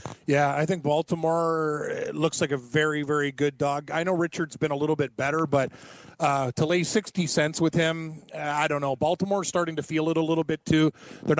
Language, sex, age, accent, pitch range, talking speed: English, male, 30-49, American, 155-195 Hz, 215 wpm